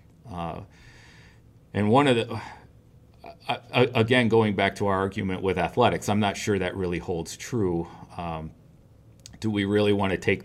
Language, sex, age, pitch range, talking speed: English, male, 40-59, 90-115 Hz, 165 wpm